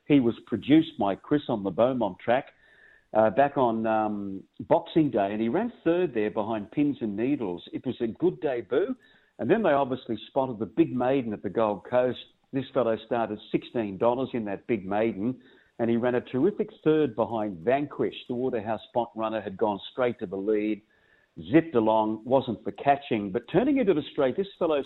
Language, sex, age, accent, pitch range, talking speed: English, male, 50-69, Australian, 110-140 Hz, 190 wpm